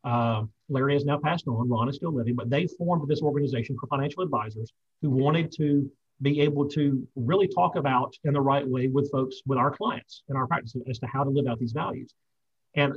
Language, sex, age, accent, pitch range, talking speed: English, male, 40-59, American, 125-165 Hz, 220 wpm